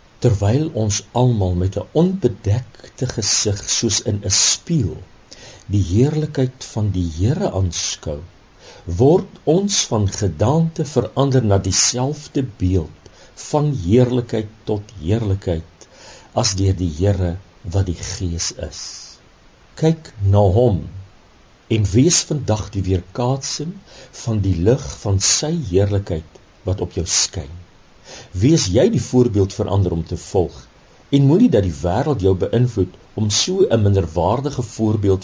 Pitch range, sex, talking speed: 95-125 Hz, male, 135 wpm